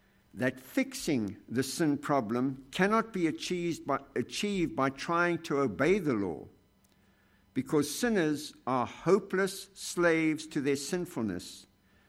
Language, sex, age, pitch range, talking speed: English, male, 60-79, 110-150 Hz, 115 wpm